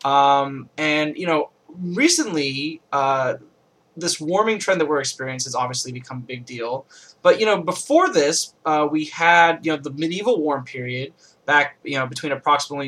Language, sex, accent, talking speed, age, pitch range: English, male, American, 170 wpm, 20-39, 135-160 Hz